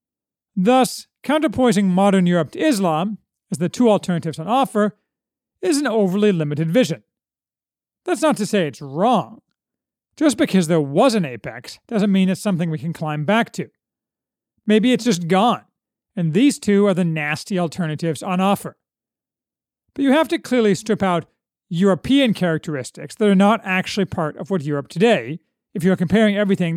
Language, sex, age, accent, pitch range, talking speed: English, male, 40-59, American, 170-235 Hz, 165 wpm